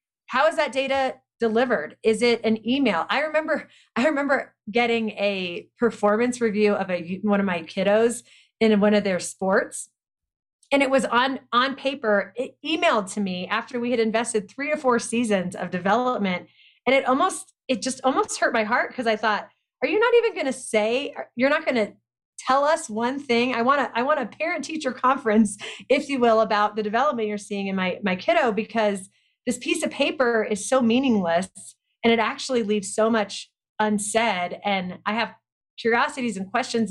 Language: English